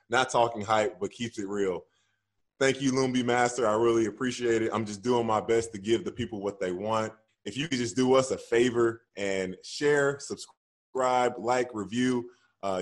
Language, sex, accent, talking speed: English, male, American, 190 wpm